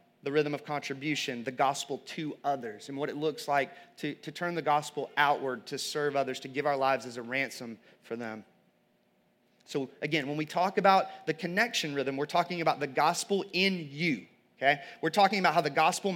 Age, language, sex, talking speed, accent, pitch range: 30-49, English, male, 195 wpm, American, 155-180 Hz